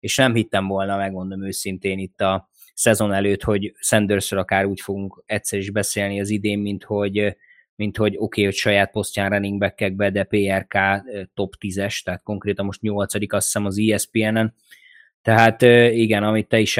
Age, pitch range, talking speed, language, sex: 20-39, 100-125 Hz, 175 wpm, Hungarian, male